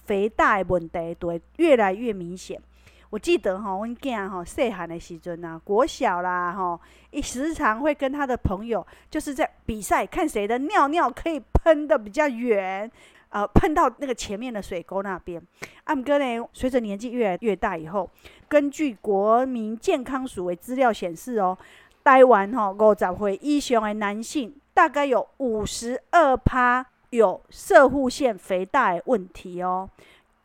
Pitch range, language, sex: 195-270 Hz, Chinese, female